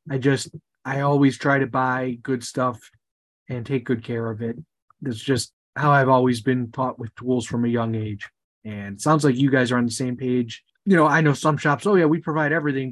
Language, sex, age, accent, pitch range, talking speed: English, male, 30-49, American, 120-135 Hz, 230 wpm